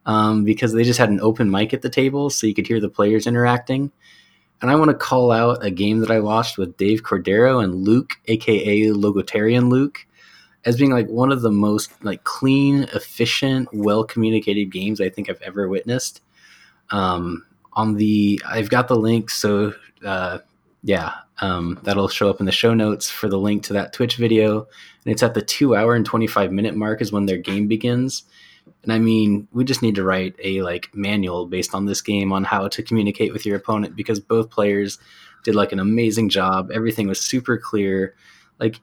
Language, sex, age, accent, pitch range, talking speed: English, male, 20-39, American, 100-115 Hz, 200 wpm